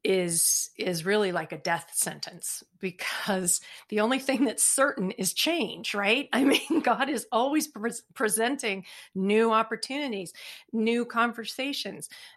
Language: English